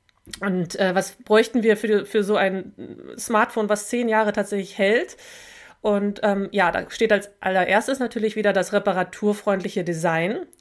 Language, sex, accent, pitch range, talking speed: German, female, German, 195-230 Hz, 155 wpm